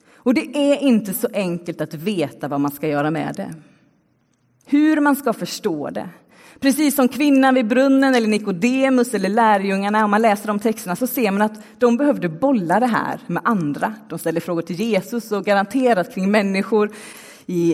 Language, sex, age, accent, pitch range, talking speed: Swedish, female, 30-49, native, 195-255 Hz, 185 wpm